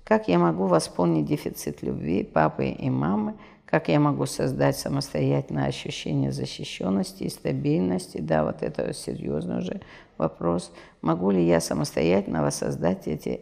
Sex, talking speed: female, 140 wpm